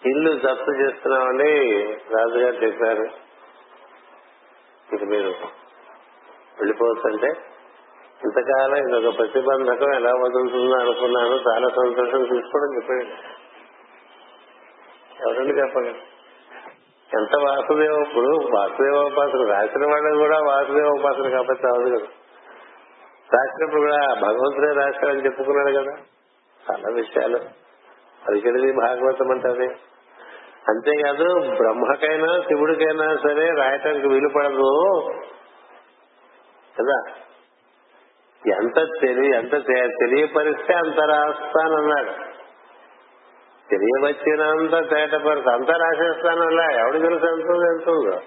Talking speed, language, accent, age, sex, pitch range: 75 wpm, Telugu, native, 50-69, male, 130-155 Hz